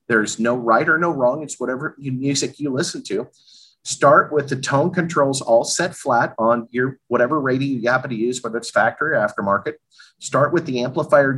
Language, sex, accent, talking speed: English, male, American, 195 wpm